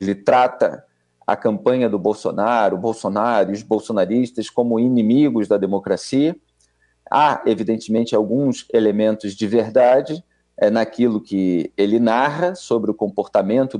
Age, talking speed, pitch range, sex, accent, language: 40-59, 120 wpm, 100-135 Hz, male, Brazilian, Portuguese